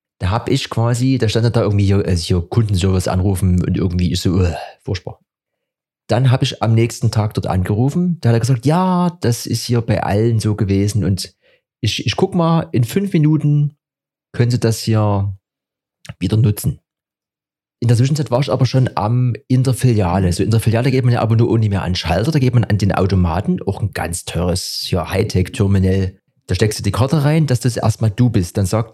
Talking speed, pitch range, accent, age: 205 wpm, 100-125 Hz, German, 30-49